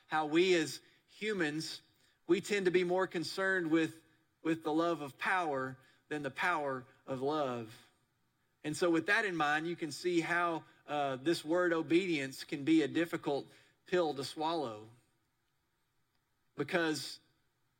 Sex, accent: male, American